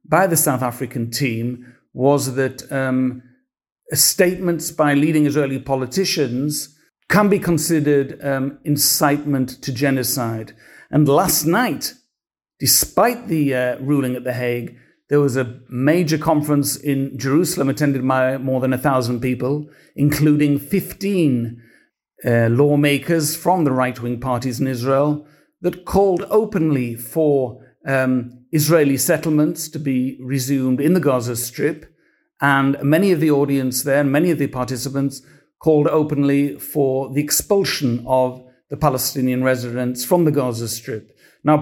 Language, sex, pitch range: English, male, 130-155 Hz